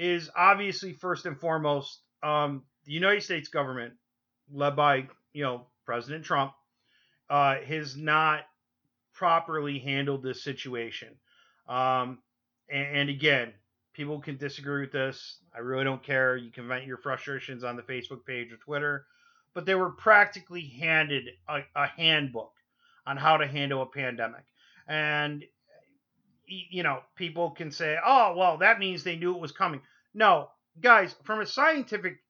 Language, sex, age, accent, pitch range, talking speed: English, male, 30-49, American, 130-165 Hz, 150 wpm